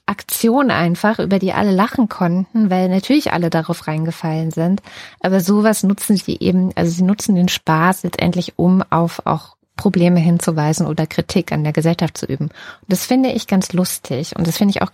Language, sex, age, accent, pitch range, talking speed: German, female, 20-39, German, 175-205 Hz, 190 wpm